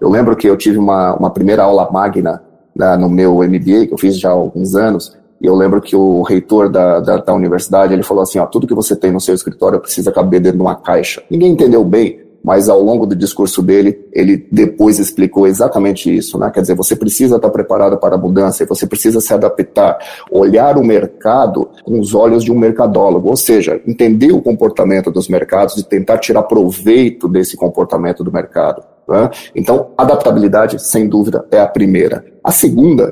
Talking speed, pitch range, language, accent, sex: 200 wpm, 95-110 Hz, Portuguese, Brazilian, male